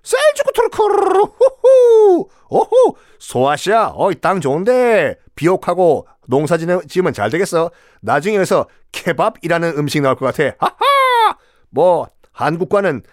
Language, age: Korean, 40-59